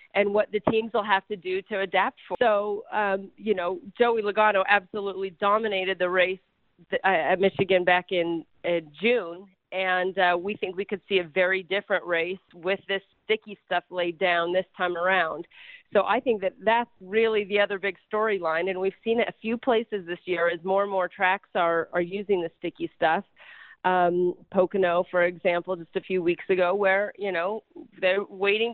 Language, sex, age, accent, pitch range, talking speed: English, female, 40-59, American, 180-215 Hz, 190 wpm